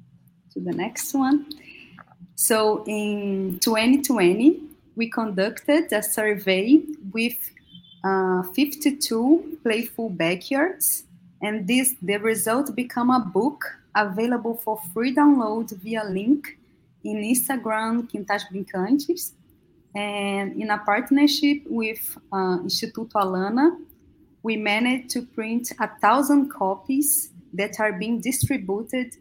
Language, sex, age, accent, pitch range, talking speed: English, female, 20-39, Brazilian, 200-265 Hz, 105 wpm